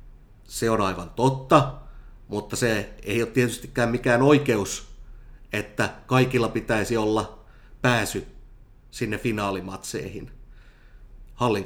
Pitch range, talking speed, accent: 100-120 Hz, 100 wpm, native